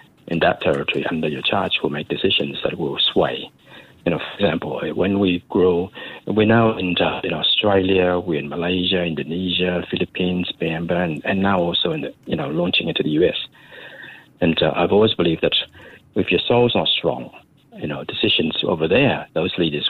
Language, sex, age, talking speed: English, male, 60-79, 180 wpm